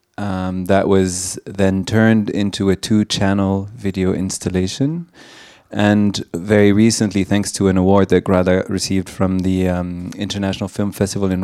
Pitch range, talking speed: 90-100 Hz, 140 wpm